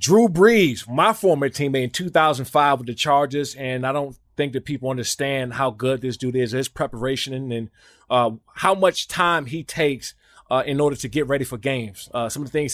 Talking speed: 210 wpm